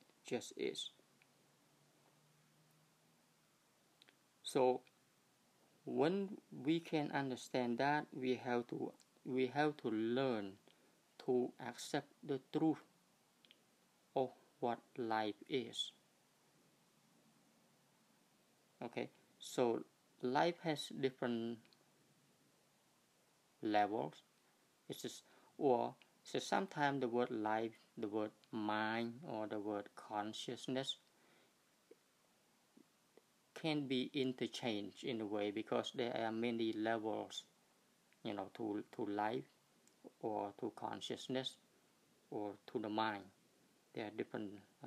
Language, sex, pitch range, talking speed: English, male, 110-135 Hz, 95 wpm